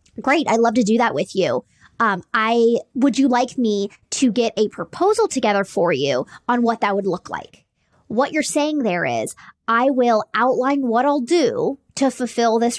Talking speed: 190 wpm